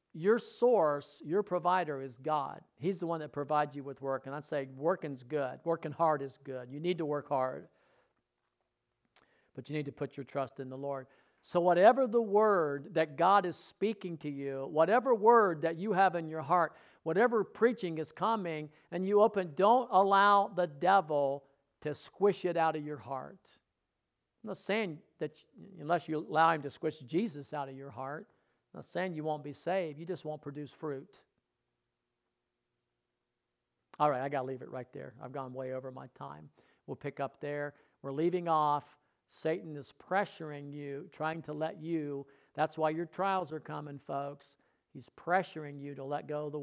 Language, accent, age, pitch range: English, American, 50-69, 140-180 Hz